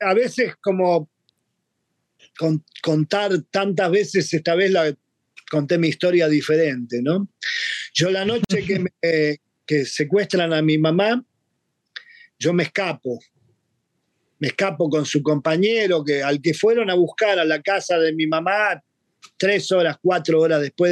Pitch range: 150-210 Hz